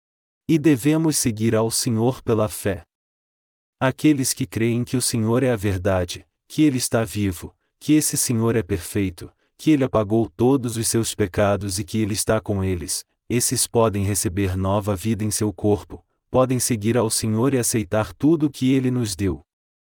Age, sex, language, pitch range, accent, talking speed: 40-59, male, Portuguese, 100-130 Hz, Brazilian, 175 wpm